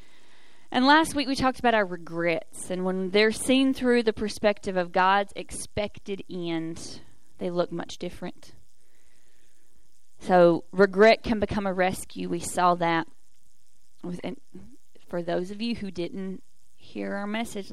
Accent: American